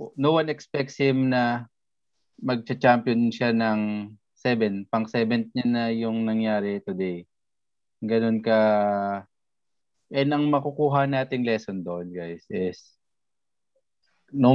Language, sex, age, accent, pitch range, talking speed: English, male, 20-39, Filipino, 105-125 Hz, 105 wpm